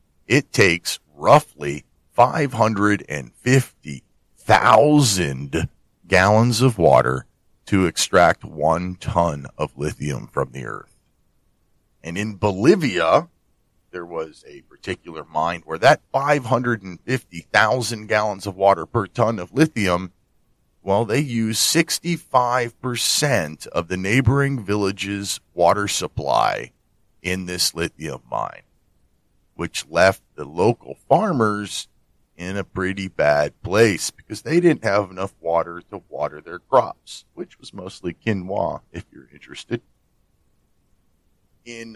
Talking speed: 110 wpm